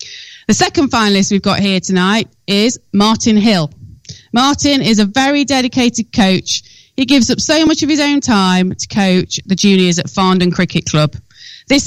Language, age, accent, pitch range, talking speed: English, 30-49, British, 175-225 Hz, 170 wpm